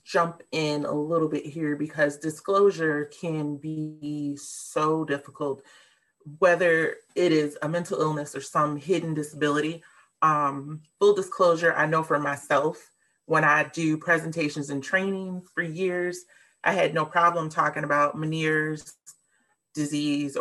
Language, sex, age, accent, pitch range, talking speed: English, female, 30-49, American, 145-170 Hz, 130 wpm